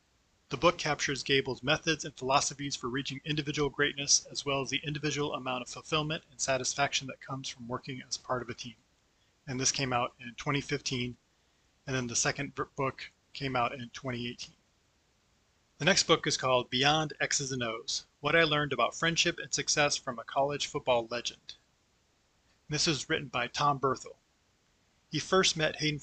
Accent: American